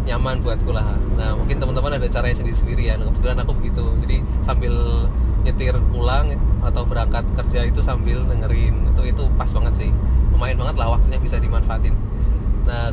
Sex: male